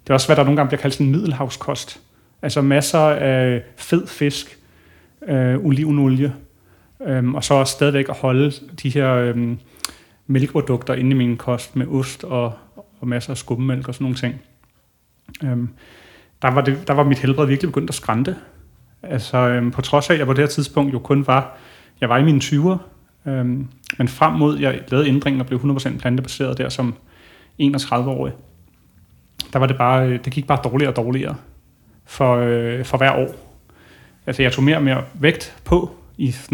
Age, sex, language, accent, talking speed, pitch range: 30-49, male, Danish, native, 185 wpm, 125-145 Hz